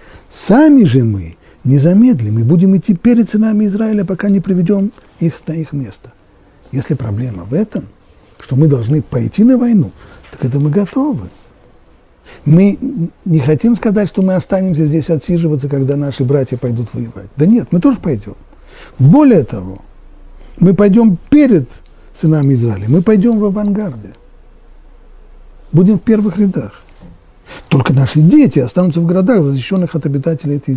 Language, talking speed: Russian, 145 wpm